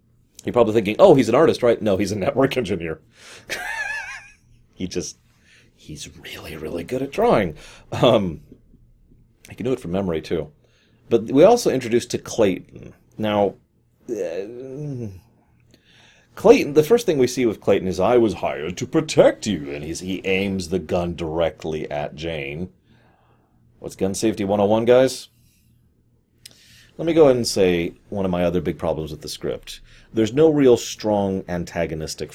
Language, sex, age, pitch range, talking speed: English, male, 30-49, 90-120 Hz, 160 wpm